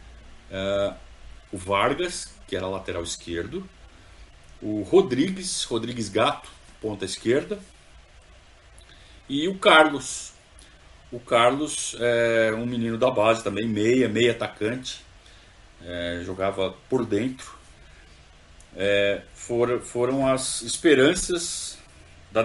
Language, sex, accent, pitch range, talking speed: Portuguese, male, Brazilian, 85-130 Hz, 90 wpm